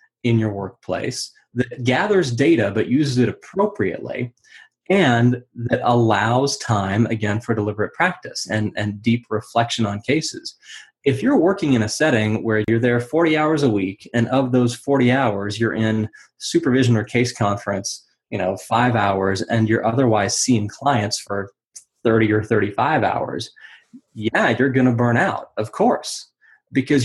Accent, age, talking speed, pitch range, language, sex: American, 20-39, 155 wpm, 110-135 Hz, English, male